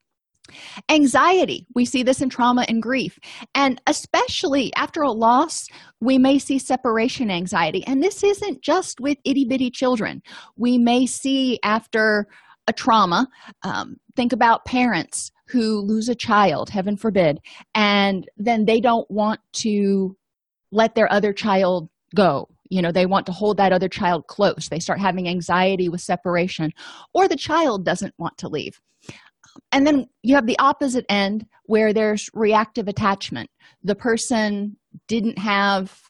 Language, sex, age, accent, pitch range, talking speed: English, female, 30-49, American, 185-255 Hz, 155 wpm